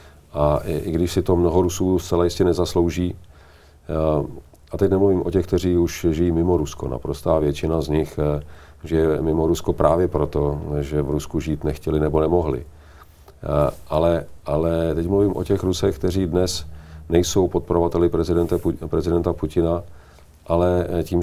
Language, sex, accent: Czech, male, native